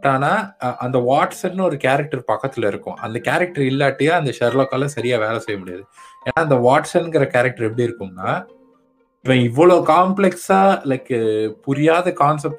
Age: 20-39